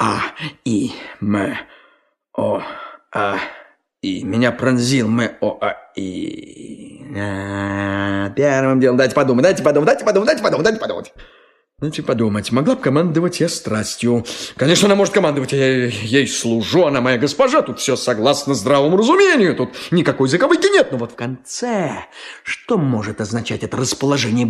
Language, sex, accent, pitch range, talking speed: Russian, male, native, 120-195 Hz, 145 wpm